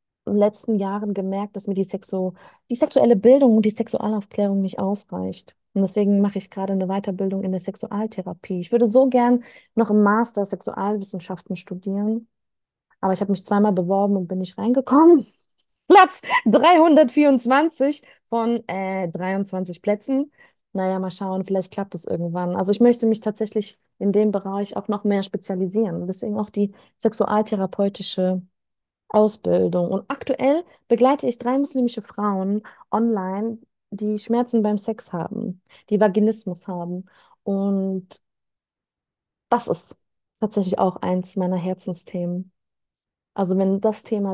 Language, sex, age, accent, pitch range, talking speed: German, female, 20-39, German, 185-220 Hz, 140 wpm